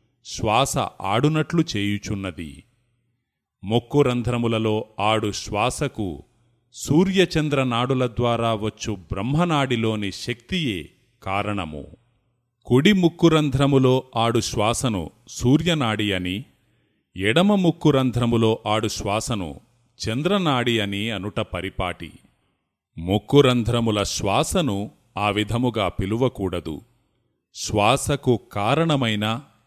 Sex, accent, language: male, native, Telugu